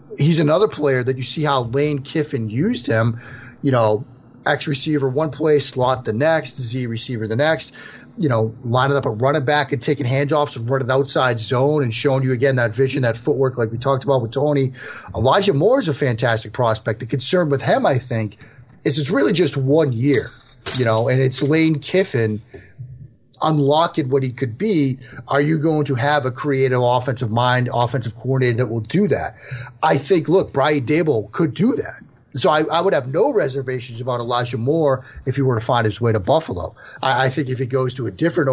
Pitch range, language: 120-145 Hz, English